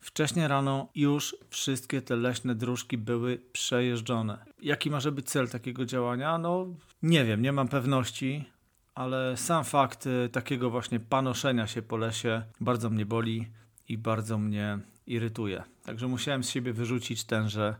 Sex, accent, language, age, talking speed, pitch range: male, native, Polish, 40-59, 145 wpm, 115-130 Hz